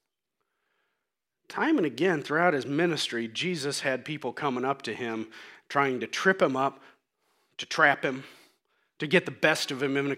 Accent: American